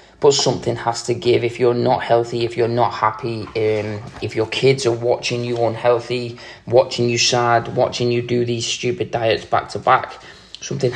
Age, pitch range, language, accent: 20-39, 115-130 Hz, English, British